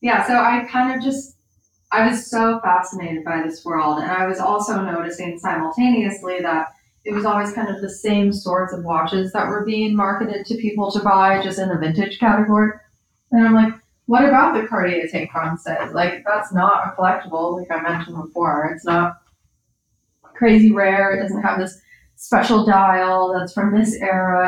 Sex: female